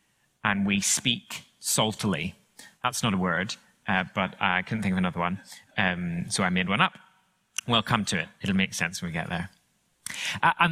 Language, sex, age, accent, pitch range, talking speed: English, male, 20-39, British, 100-140 Hz, 195 wpm